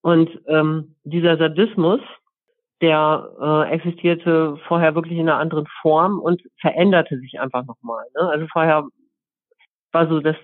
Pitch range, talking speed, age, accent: 155-180 Hz, 140 wpm, 50-69, German